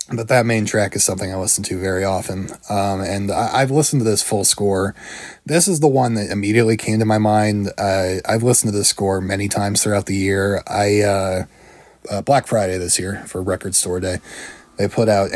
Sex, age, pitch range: male, 20-39, 100-115 Hz